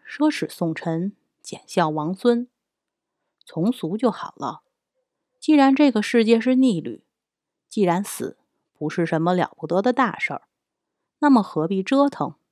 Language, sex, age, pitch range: Chinese, female, 30-49, 165-240 Hz